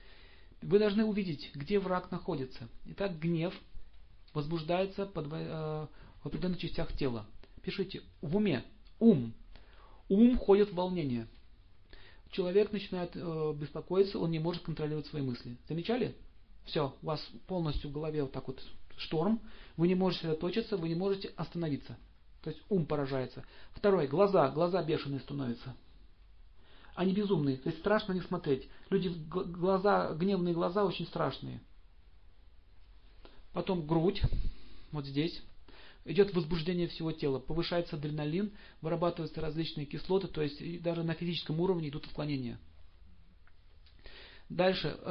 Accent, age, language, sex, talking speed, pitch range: native, 40-59, Russian, male, 130 wpm, 130-180 Hz